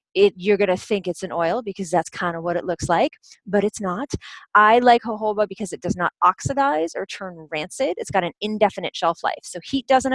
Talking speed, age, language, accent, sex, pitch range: 225 wpm, 30-49, English, American, female, 175-215 Hz